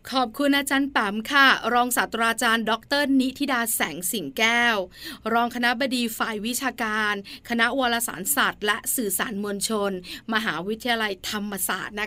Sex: female